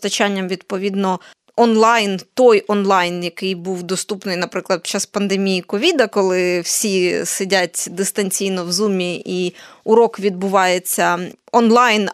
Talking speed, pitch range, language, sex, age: 115 wpm, 195-235 Hz, Ukrainian, female, 20-39